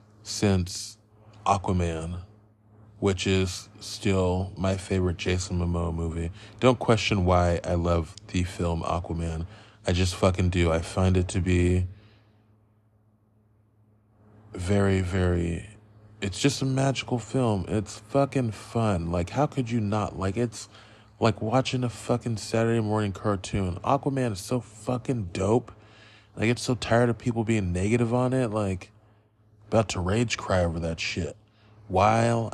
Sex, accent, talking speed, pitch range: male, American, 140 wpm, 95-110 Hz